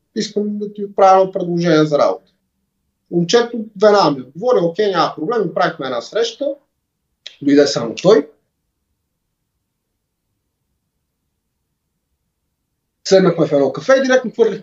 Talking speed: 115 wpm